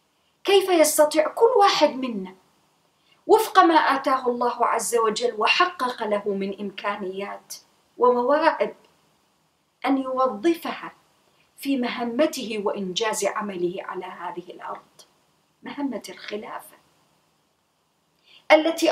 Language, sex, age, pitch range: English, female, 40-59, 235-300 Hz